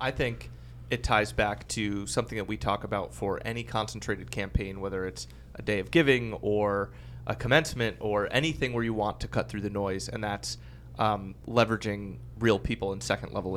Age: 30-49